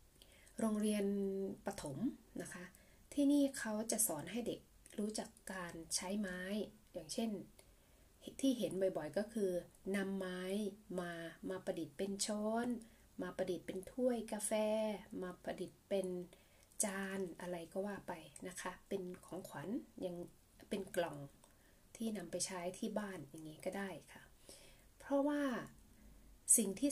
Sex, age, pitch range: female, 20-39, 180-215 Hz